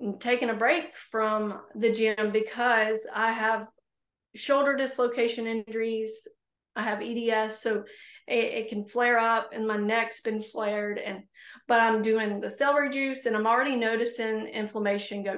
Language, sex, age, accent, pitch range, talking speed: English, female, 30-49, American, 215-245 Hz, 150 wpm